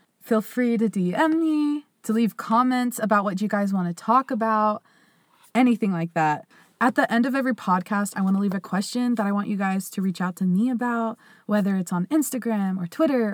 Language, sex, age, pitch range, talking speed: English, female, 20-39, 185-235 Hz, 215 wpm